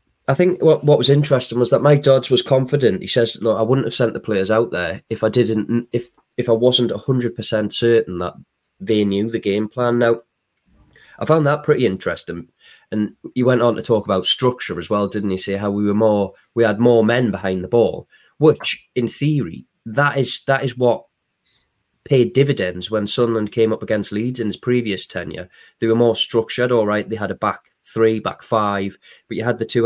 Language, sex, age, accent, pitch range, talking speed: English, male, 20-39, British, 105-125 Hz, 210 wpm